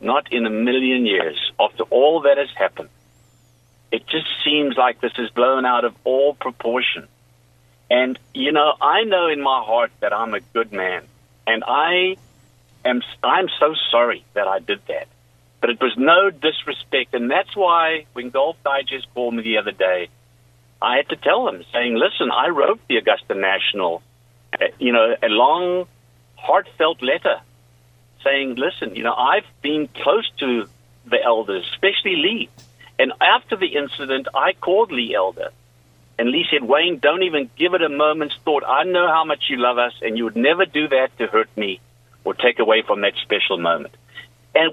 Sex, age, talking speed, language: male, 50-69, 180 wpm, English